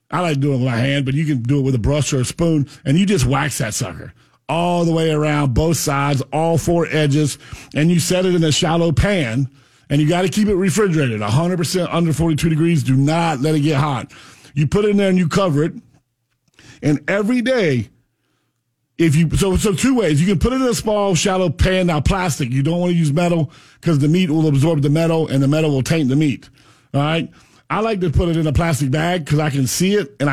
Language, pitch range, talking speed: English, 140-170 Hz, 250 wpm